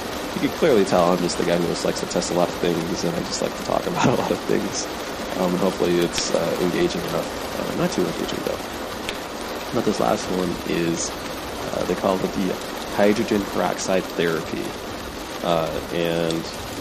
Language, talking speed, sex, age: English, 190 wpm, male, 30-49